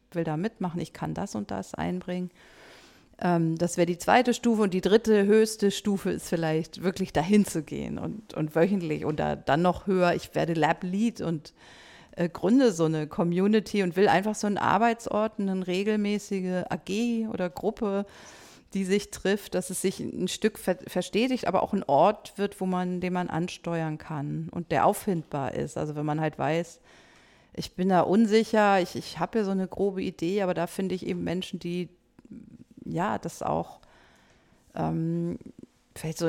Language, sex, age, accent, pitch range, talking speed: German, female, 40-59, German, 165-200 Hz, 180 wpm